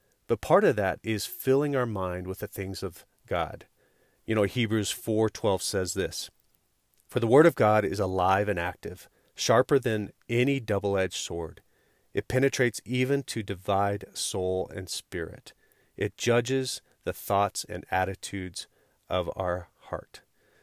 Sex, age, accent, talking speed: male, 40-59, American, 145 wpm